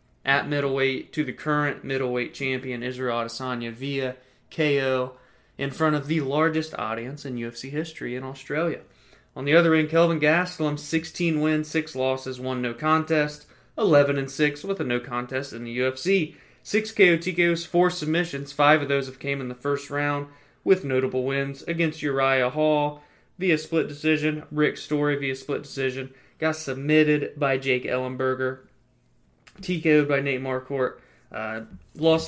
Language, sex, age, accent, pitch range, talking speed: English, male, 20-39, American, 130-155 Hz, 155 wpm